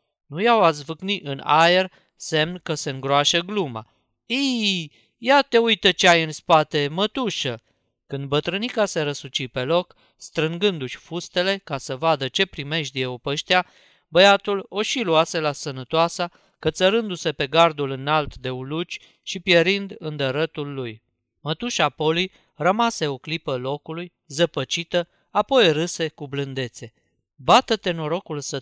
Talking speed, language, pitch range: 135 wpm, Romanian, 140-185 Hz